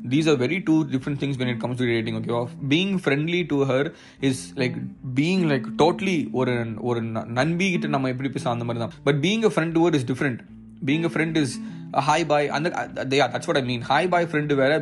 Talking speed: 230 wpm